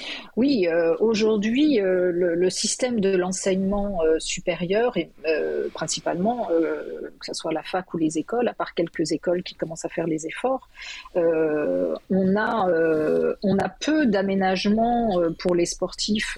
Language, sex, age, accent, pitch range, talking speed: French, female, 40-59, French, 175-215 Hz, 165 wpm